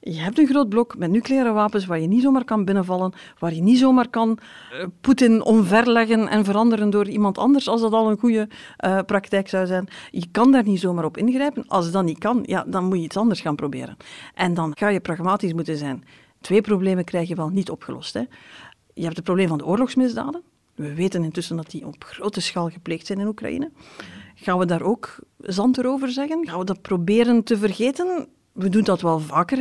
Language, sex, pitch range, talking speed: Dutch, female, 180-235 Hz, 220 wpm